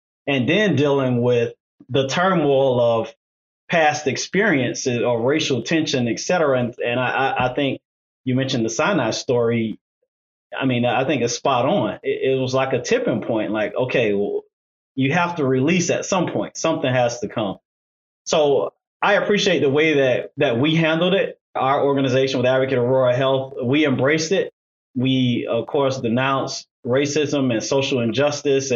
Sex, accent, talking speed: male, American, 165 wpm